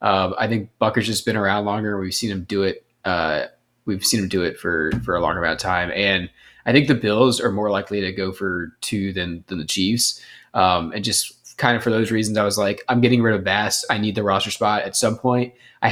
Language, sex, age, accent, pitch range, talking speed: English, male, 20-39, American, 105-130 Hz, 250 wpm